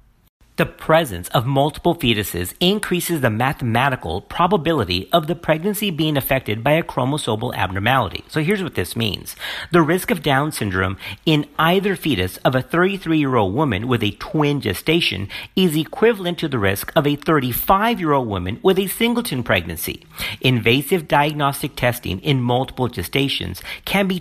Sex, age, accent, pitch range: male, 50-69, American, 105-165 Hz